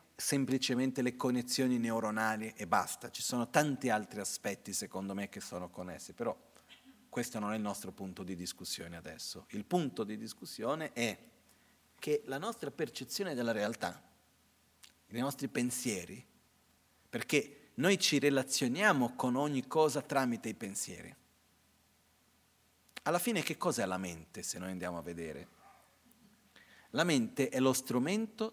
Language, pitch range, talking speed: Italian, 110-165 Hz, 140 wpm